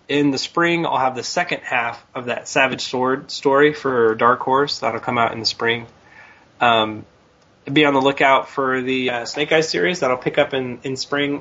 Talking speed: 205 wpm